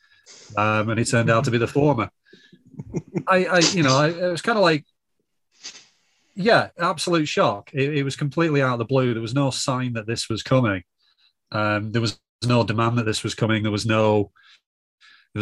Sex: male